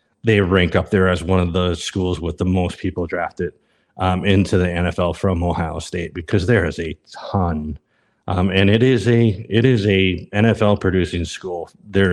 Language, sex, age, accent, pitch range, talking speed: English, male, 30-49, American, 90-100 Hz, 190 wpm